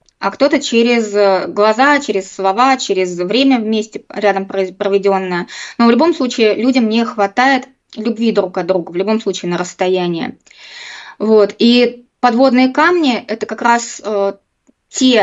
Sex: female